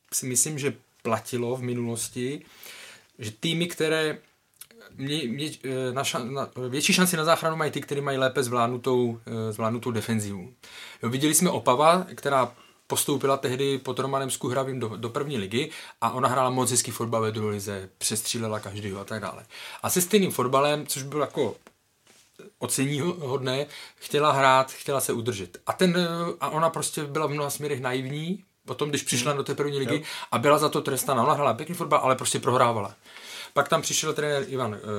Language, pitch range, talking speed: Czech, 115-145 Hz, 170 wpm